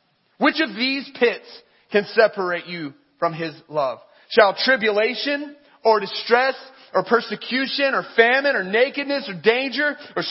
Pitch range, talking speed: 220-280 Hz, 135 wpm